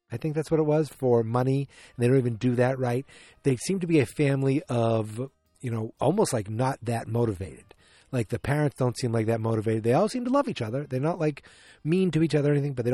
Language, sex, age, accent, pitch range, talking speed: English, male, 30-49, American, 110-135 Hz, 250 wpm